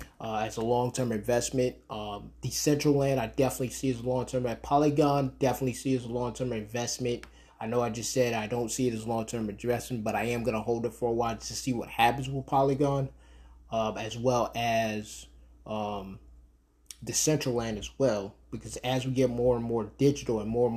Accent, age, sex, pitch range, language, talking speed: American, 20-39, male, 115-135 Hz, English, 200 wpm